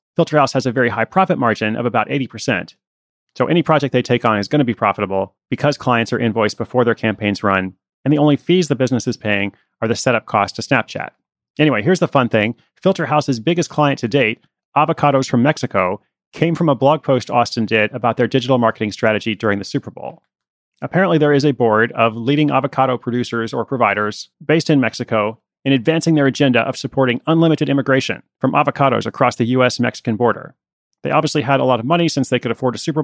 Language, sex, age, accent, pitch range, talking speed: English, male, 30-49, American, 120-150 Hz, 210 wpm